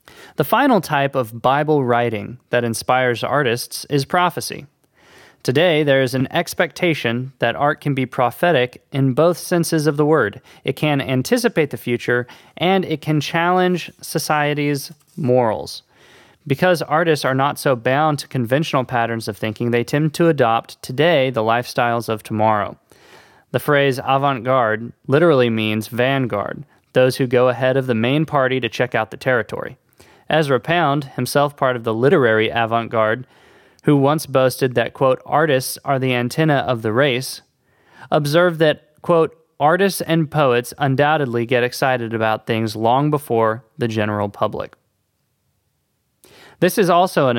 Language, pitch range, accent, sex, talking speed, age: English, 120-155 Hz, American, male, 150 wpm, 20-39